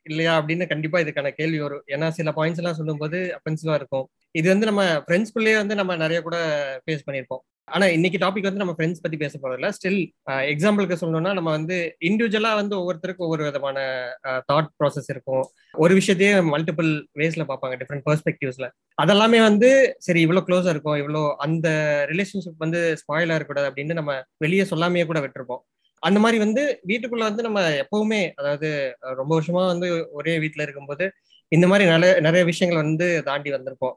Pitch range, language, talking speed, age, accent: 145-180 Hz, Tamil, 165 wpm, 20-39, native